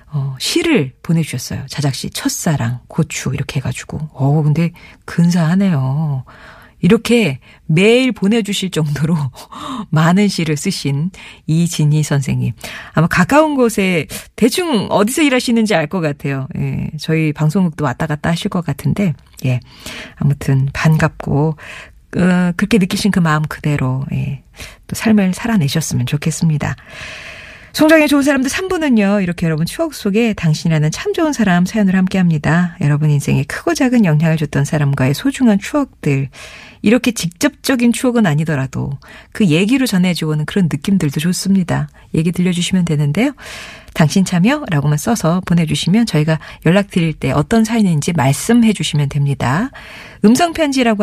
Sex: female